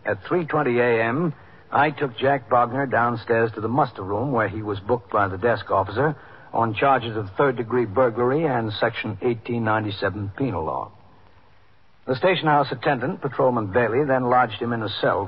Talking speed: 165 wpm